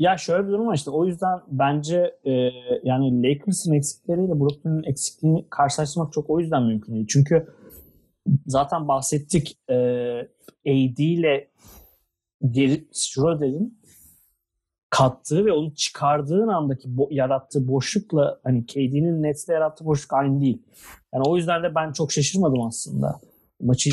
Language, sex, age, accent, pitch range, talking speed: Turkish, male, 40-59, native, 130-165 Hz, 130 wpm